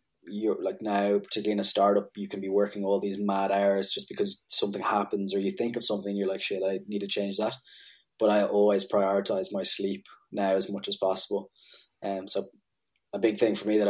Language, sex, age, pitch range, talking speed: English, male, 20-39, 95-105 Hz, 220 wpm